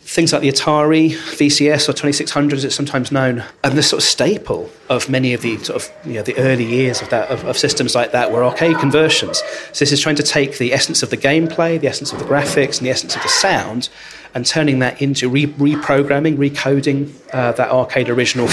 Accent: British